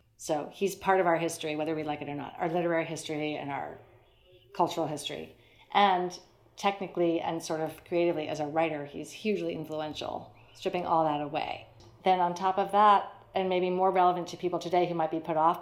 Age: 40-59